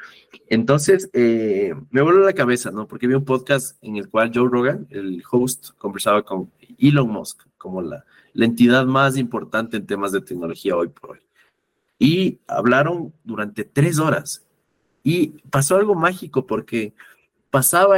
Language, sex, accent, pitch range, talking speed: Spanish, male, Mexican, 115-145 Hz, 155 wpm